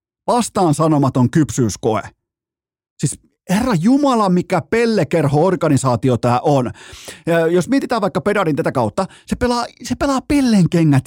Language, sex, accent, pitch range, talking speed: Finnish, male, native, 130-190 Hz, 120 wpm